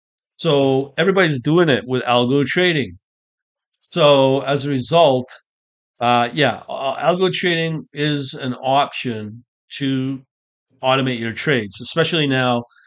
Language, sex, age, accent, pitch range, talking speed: English, male, 40-59, American, 120-145 Hz, 110 wpm